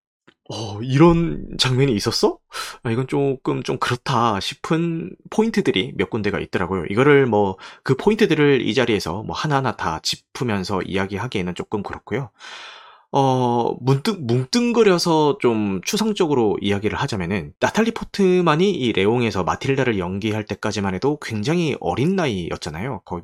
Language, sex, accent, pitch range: Korean, male, native, 110-175 Hz